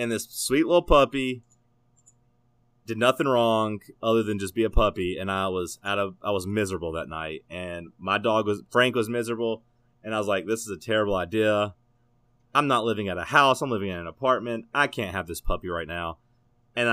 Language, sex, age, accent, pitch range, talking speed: English, male, 30-49, American, 100-120 Hz, 210 wpm